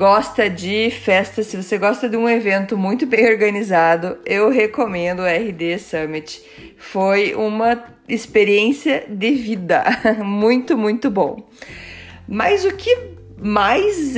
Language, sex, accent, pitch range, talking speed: Portuguese, female, Brazilian, 195-240 Hz, 125 wpm